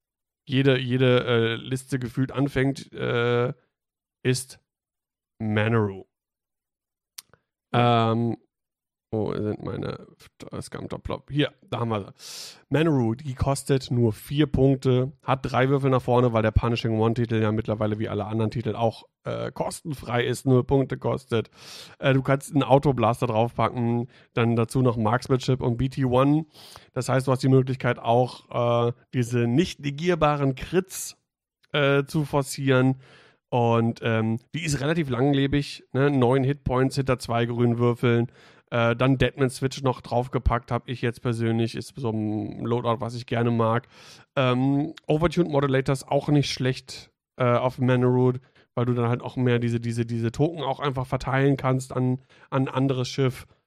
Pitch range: 115-135 Hz